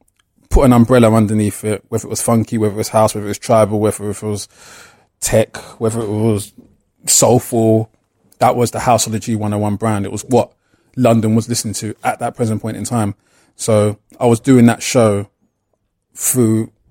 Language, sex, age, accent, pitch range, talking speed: English, male, 20-39, British, 105-125 Hz, 190 wpm